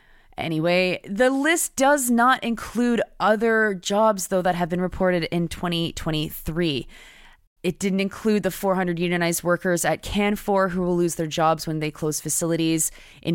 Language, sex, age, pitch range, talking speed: English, female, 20-39, 155-190 Hz, 155 wpm